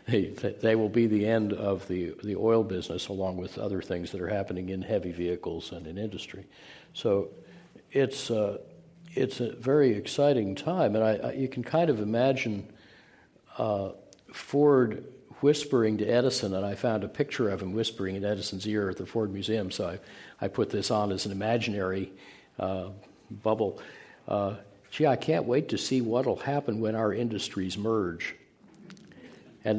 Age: 60-79